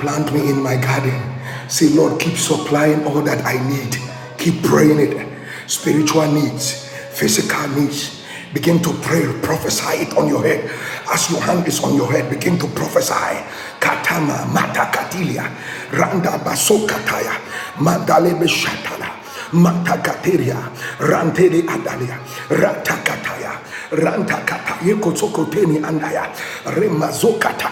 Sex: male